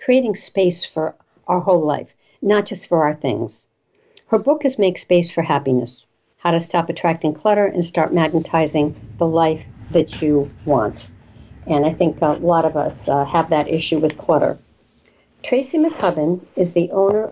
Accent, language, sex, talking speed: American, English, female, 170 wpm